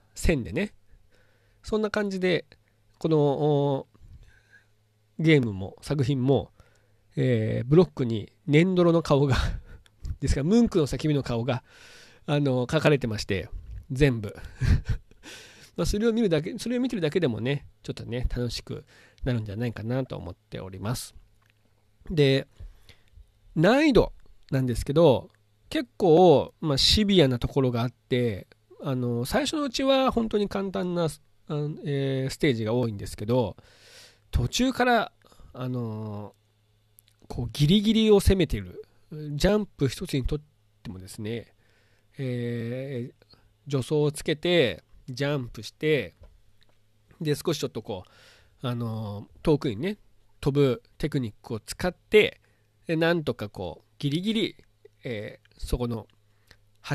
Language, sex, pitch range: Japanese, male, 105-155 Hz